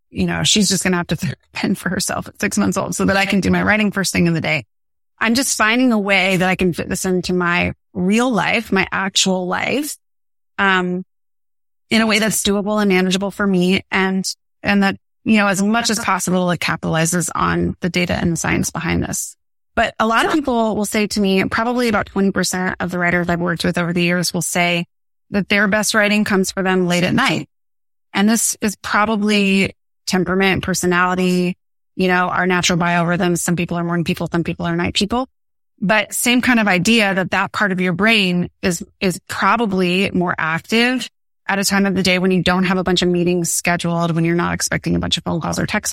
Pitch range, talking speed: 175-205 Hz, 220 wpm